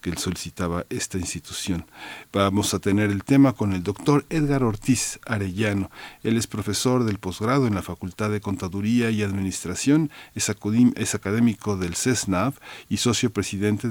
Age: 50-69